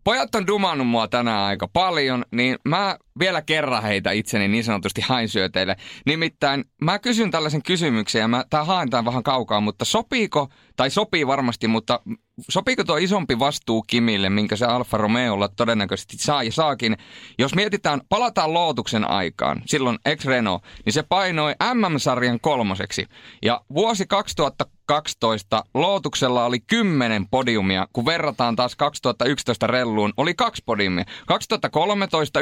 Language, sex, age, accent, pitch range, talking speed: Finnish, male, 30-49, native, 110-155 Hz, 145 wpm